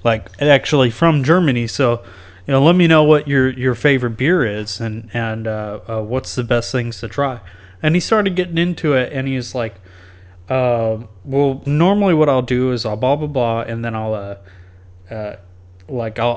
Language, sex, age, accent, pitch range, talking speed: English, male, 30-49, American, 105-145 Hz, 190 wpm